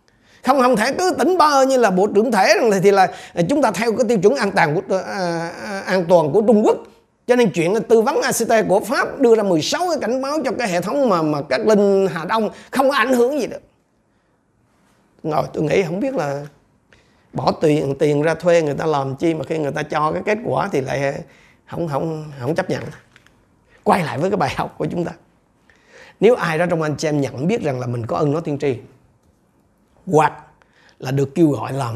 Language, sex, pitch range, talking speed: Vietnamese, male, 140-210 Hz, 230 wpm